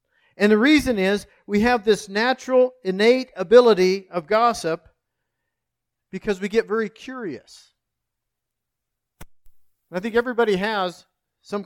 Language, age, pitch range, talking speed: English, 50-69, 165-215 Hz, 115 wpm